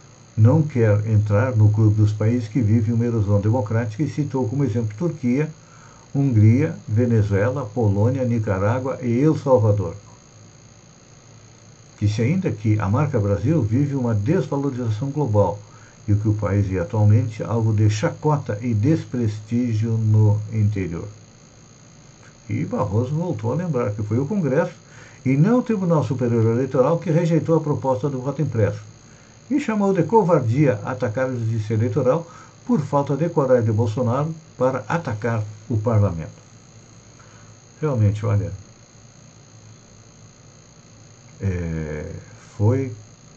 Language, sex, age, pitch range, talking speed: Portuguese, male, 60-79, 110-140 Hz, 125 wpm